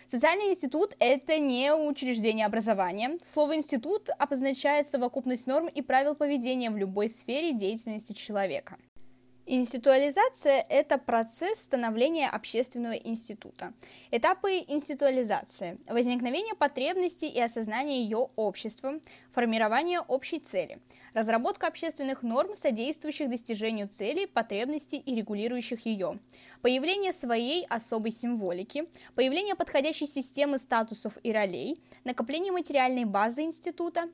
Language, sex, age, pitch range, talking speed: Russian, female, 20-39, 225-305 Hz, 105 wpm